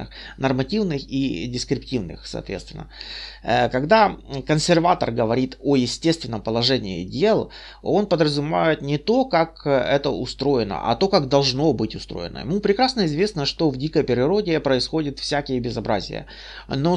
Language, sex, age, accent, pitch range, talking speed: Russian, male, 30-49, native, 125-165 Hz, 125 wpm